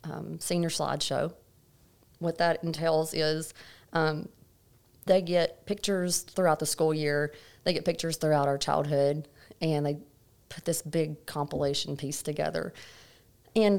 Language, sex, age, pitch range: English, female, 30-49, 150-175 Hz